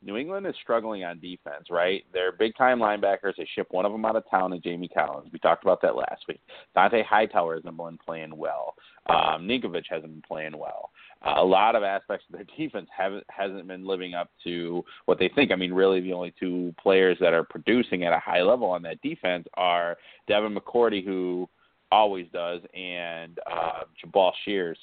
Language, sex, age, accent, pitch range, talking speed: English, male, 30-49, American, 85-105 Hz, 200 wpm